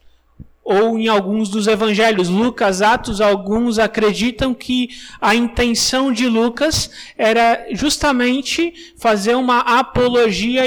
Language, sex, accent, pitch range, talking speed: Portuguese, male, Brazilian, 215-255 Hz, 105 wpm